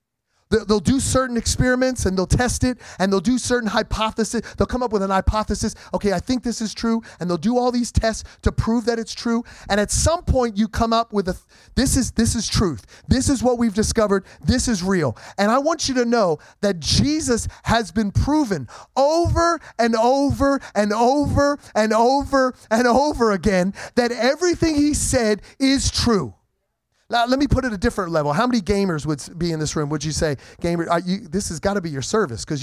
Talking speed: 210 wpm